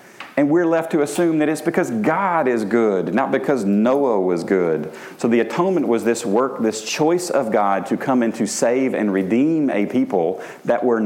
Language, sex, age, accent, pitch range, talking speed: English, male, 40-59, American, 100-135 Hz, 200 wpm